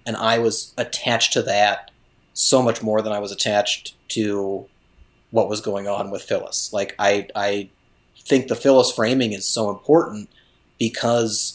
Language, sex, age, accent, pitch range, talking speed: English, male, 30-49, American, 100-115 Hz, 160 wpm